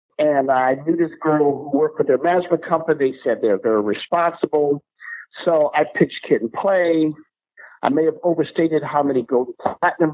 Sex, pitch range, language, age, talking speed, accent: male, 150-200 Hz, English, 50-69, 180 wpm, American